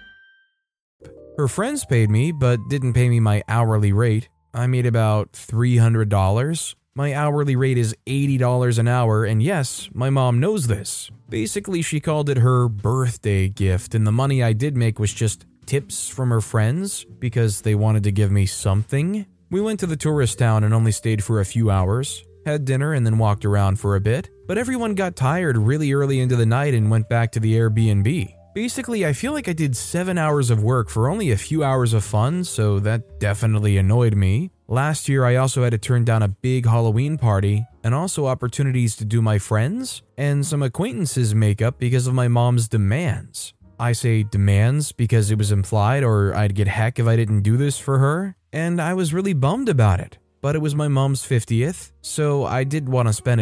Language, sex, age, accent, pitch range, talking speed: English, male, 20-39, American, 110-140 Hz, 200 wpm